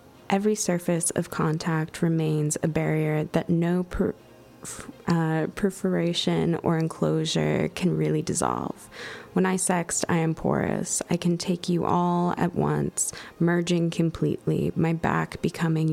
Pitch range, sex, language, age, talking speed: 155-175 Hz, female, English, 20-39, 130 wpm